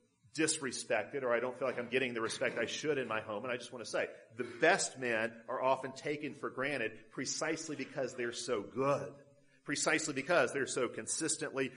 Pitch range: 135-225 Hz